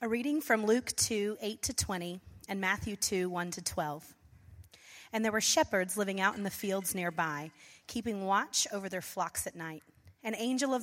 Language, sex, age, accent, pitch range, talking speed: English, female, 30-49, American, 175-215 Hz, 190 wpm